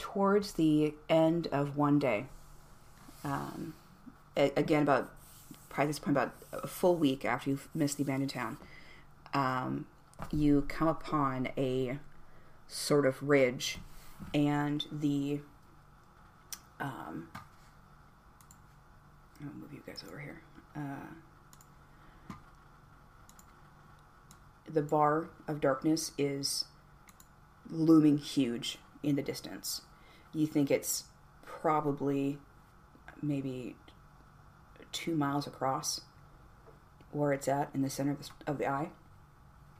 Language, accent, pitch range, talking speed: English, American, 140-155 Hz, 105 wpm